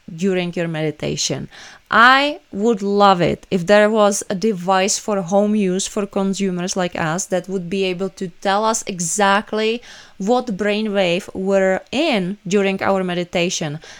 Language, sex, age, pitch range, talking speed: English, female, 20-39, 190-225 Hz, 145 wpm